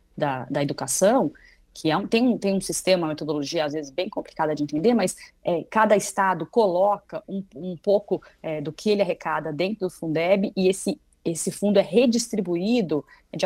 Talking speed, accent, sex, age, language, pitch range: 185 wpm, Brazilian, female, 30-49, Portuguese, 160-215 Hz